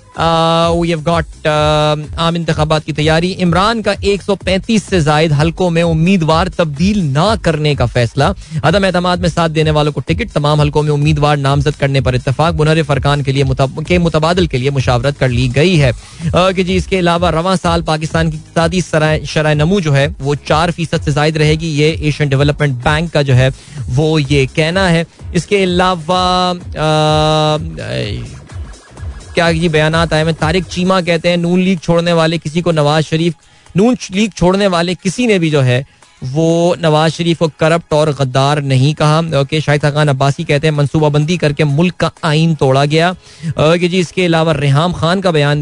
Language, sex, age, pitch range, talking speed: Hindi, male, 20-39, 150-175 Hz, 165 wpm